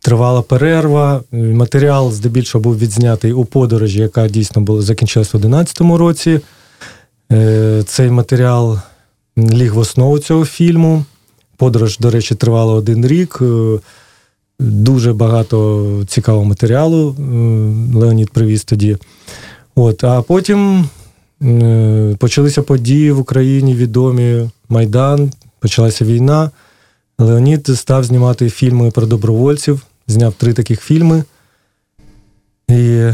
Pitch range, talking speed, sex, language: 115-135 Hz, 100 wpm, male, Russian